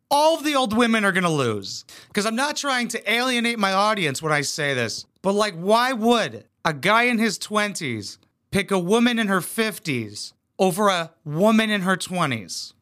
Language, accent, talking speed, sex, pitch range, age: English, American, 195 wpm, male, 140-210 Hz, 30-49